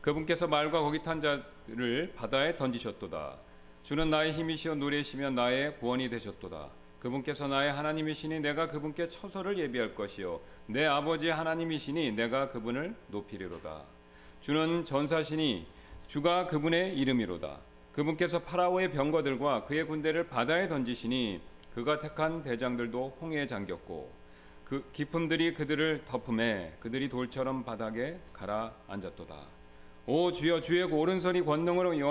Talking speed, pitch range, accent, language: 110 wpm, 115-160 Hz, Korean, English